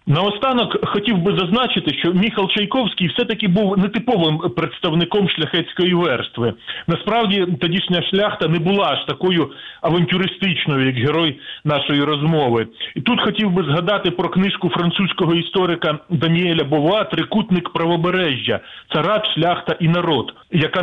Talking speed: 135 wpm